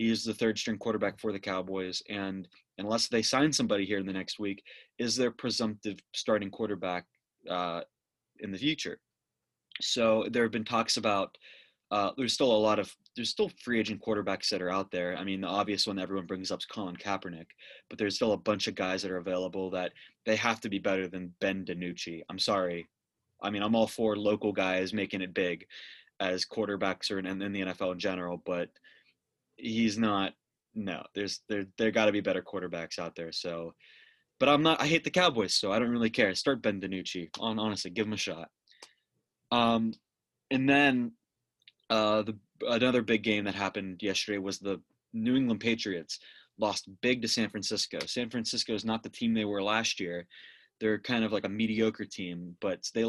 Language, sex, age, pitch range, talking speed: English, male, 20-39, 95-115 Hz, 200 wpm